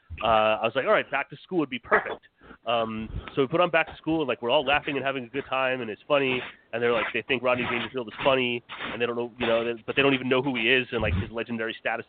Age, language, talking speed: 30-49, English, 310 wpm